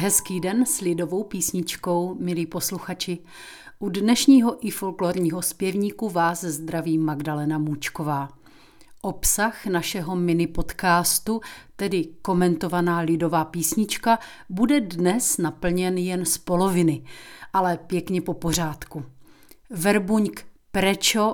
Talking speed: 100 wpm